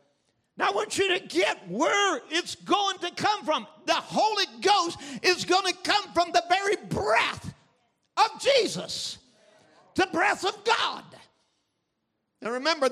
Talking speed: 140 wpm